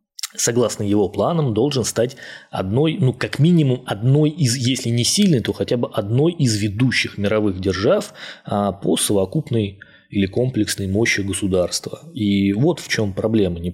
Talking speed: 150 wpm